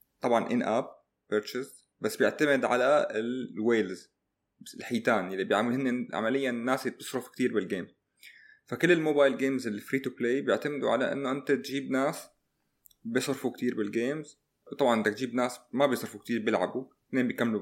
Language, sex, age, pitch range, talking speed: Arabic, male, 20-39, 110-135 Hz, 145 wpm